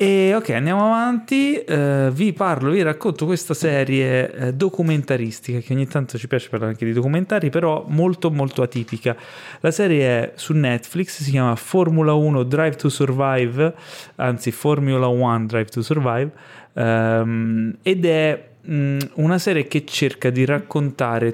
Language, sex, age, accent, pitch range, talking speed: Italian, male, 30-49, native, 115-150 Hz, 140 wpm